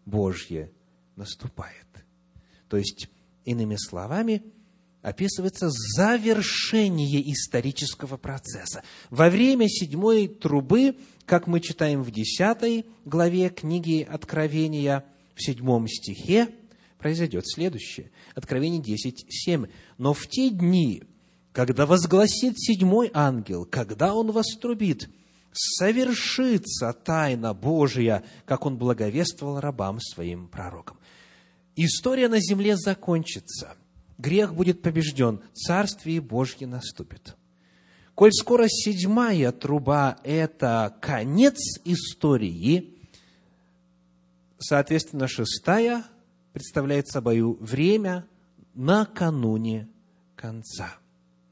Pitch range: 115-190 Hz